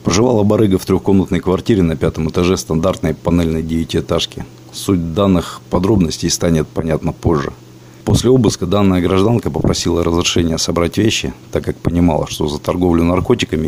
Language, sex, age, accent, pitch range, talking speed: Russian, male, 40-59, native, 80-95 Hz, 140 wpm